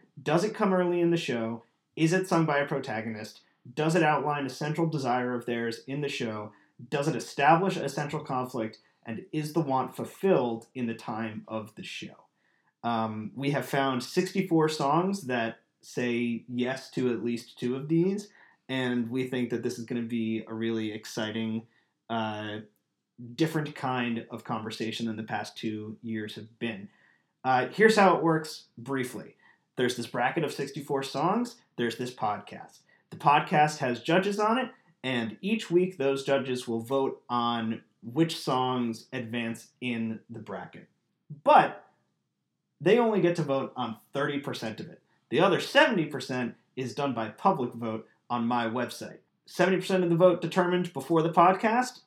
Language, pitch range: English, 115-155 Hz